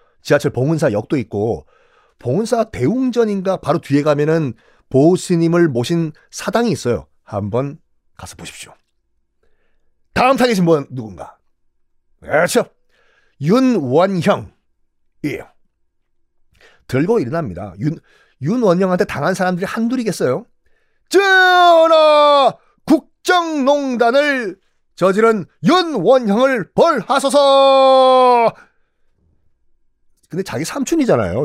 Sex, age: male, 40-59